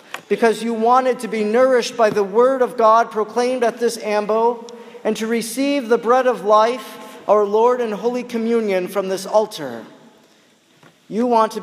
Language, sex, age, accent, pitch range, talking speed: English, male, 40-59, American, 210-240 Hz, 170 wpm